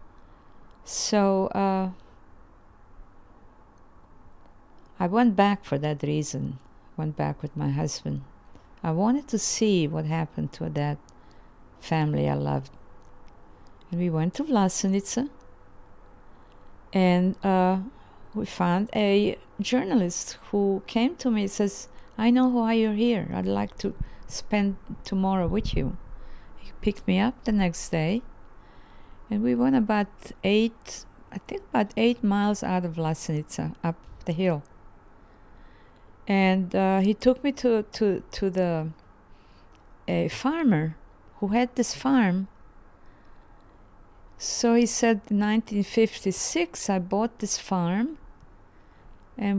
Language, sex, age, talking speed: English, female, 50-69, 125 wpm